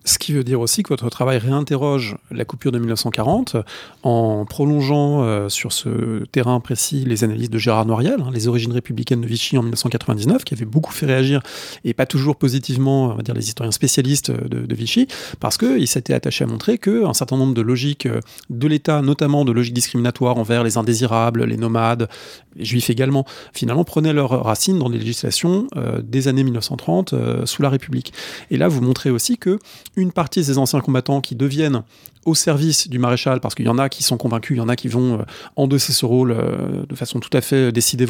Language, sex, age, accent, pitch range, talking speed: English, male, 30-49, French, 120-145 Hz, 210 wpm